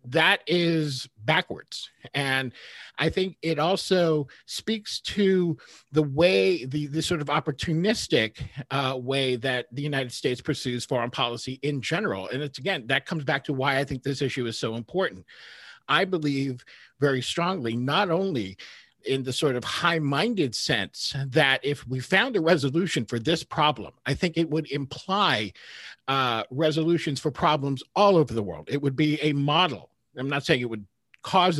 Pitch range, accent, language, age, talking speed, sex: 125-160 Hz, American, English, 50-69, 165 wpm, male